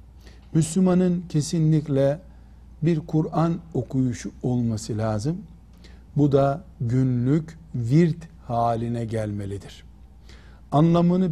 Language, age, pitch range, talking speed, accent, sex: Turkish, 60-79, 120-175 Hz, 75 wpm, native, male